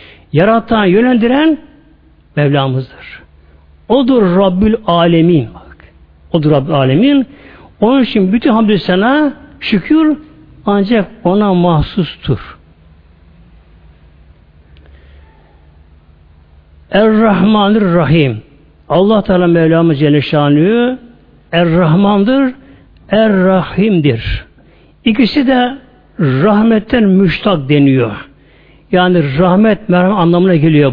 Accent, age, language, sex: native, 60-79, Turkish, male